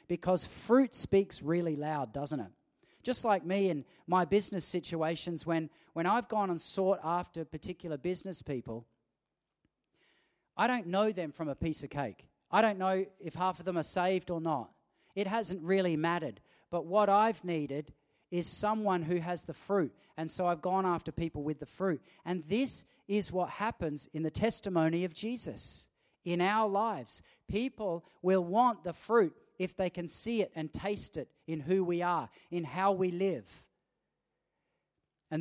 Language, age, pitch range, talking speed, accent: English, 40-59, 150-190 Hz, 175 wpm, Australian